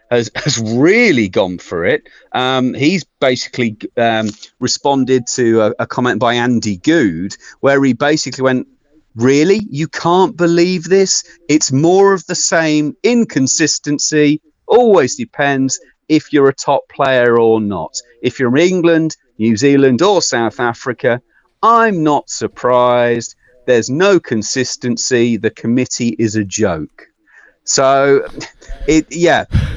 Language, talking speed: English, 130 wpm